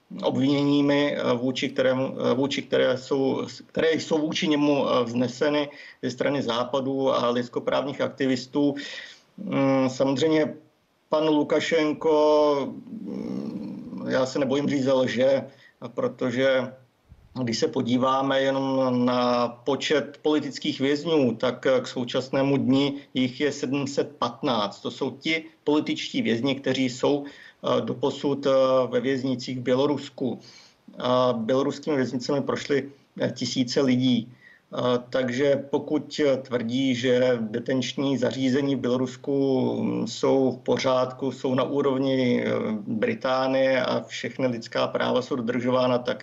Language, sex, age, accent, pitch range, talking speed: Czech, male, 50-69, native, 125-140 Hz, 105 wpm